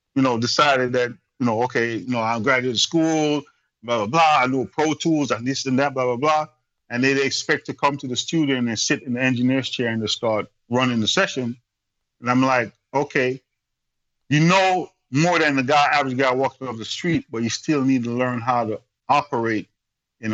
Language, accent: English, American